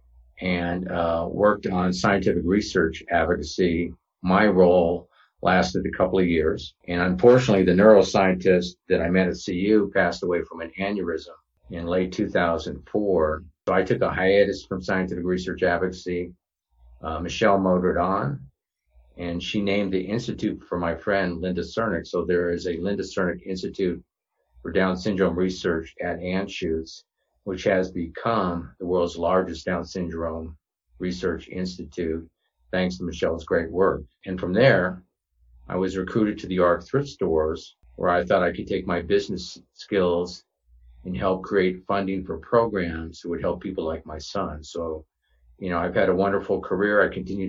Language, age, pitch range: English, 50-69, 85-95 Hz